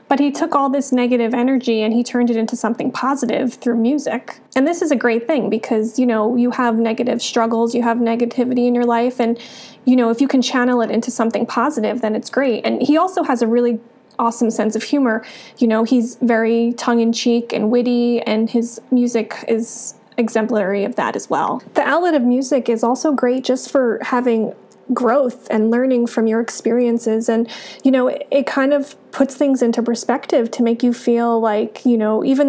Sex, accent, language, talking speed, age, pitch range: female, American, English, 205 wpm, 30-49, 230-255 Hz